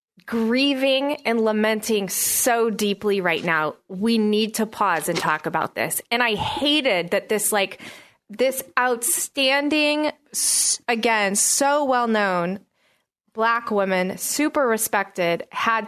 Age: 20-39